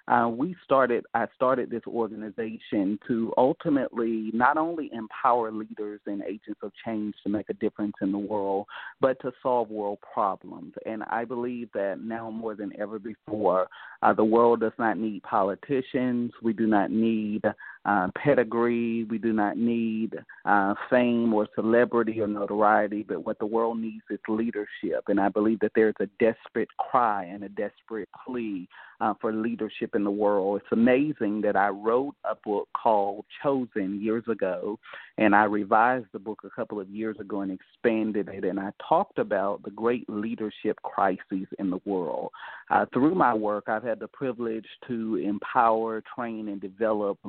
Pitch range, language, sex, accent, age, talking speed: 105-115 Hz, English, male, American, 30-49, 170 wpm